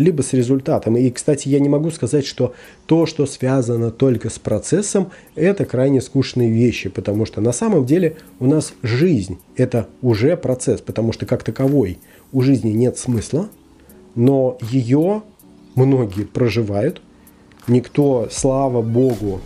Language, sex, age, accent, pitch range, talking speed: Russian, male, 20-39, native, 115-140 Hz, 140 wpm